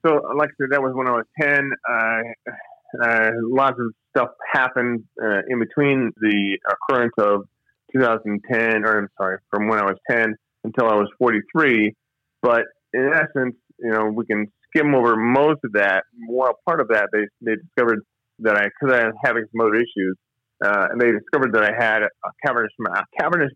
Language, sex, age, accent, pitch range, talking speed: English, male, 30-49, American, 100-130 Hz, 190 wpm